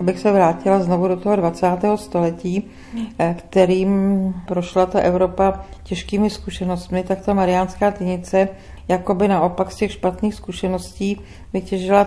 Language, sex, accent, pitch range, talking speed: Czech, female, native, 175-195 Hz, 130 wpm